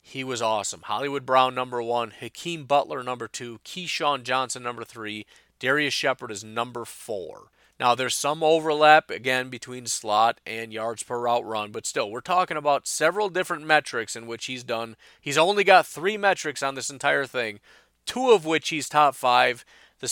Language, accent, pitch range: English, American, 110-140 Hz